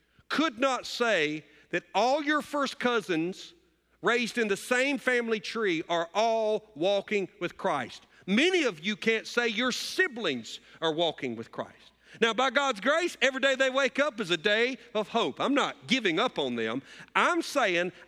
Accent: American